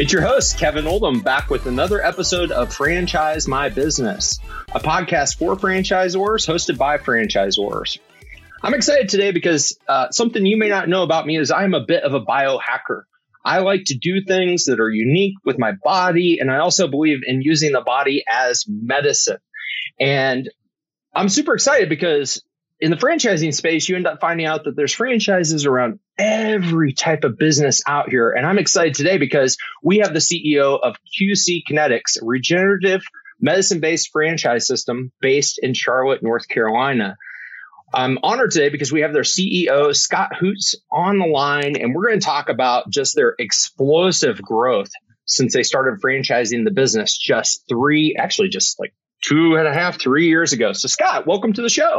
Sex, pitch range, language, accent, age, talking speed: male, 145-195 Hz, English, American, 30-49, 175 wpm